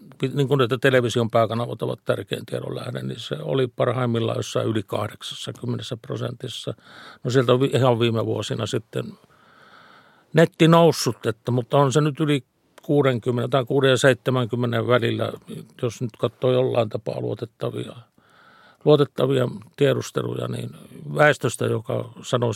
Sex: male